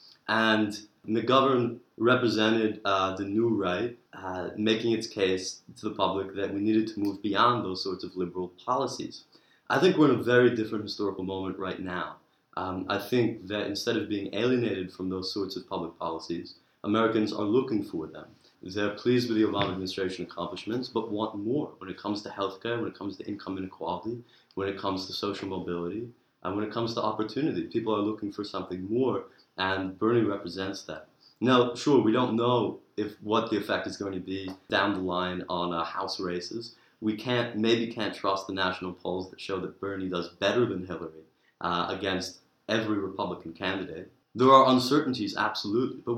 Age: 30-49